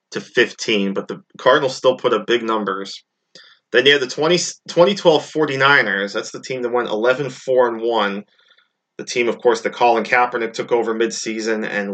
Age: 20-39